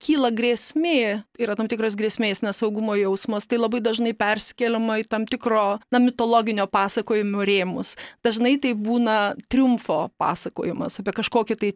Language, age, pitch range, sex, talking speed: English, 30-49, 205-240 Hz, female, 140 wpm